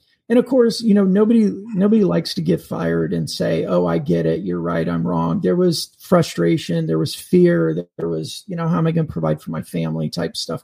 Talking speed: 235 wpm